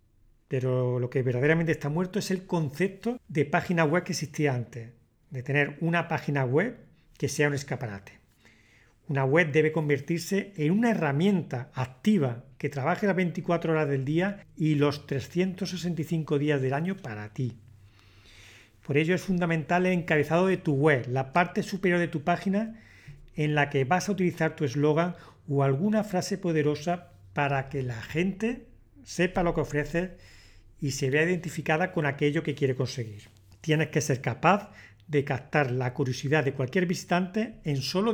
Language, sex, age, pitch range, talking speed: English, male, 40-59, 130-180 Hz, 165 wpm